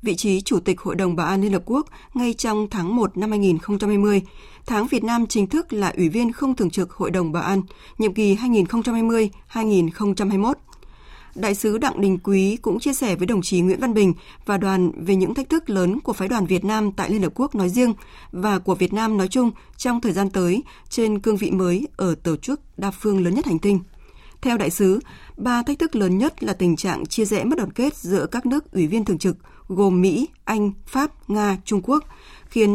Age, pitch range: 20-39, 185-230 Hz